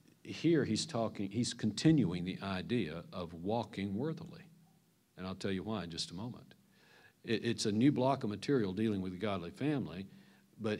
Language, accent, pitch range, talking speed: English, American, 95-120 Hz, 180 wpm